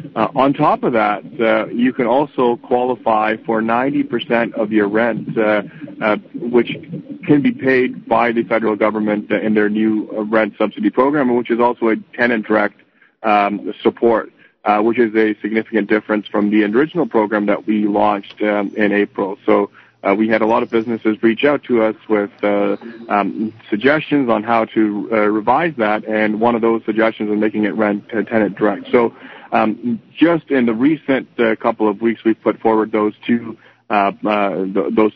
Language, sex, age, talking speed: English, male, 40-59, 185 wpm